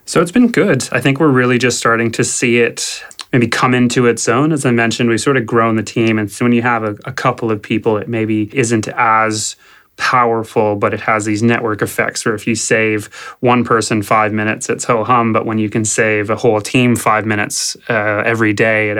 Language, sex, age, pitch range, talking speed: English, male, 20-39, 105-120 Hz, 225 wpm